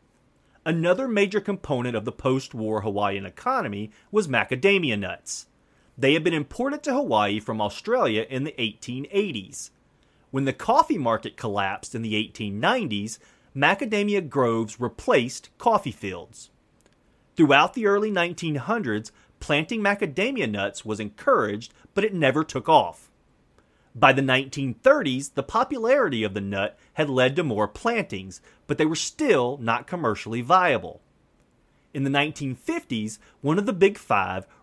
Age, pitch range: 30-49, 110-175 Hz